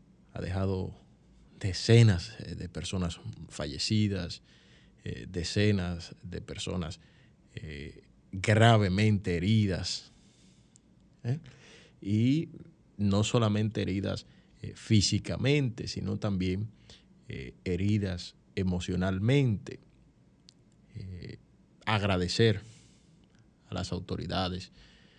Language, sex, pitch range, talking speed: Spanish, male, 90-105 Hz, 70 wpm